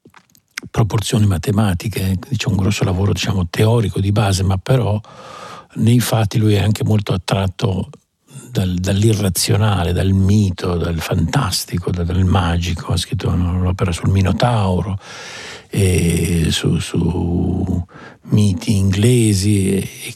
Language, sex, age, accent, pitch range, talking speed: Italian, male, 60-79, native, 95-115 Hz, 115 wpm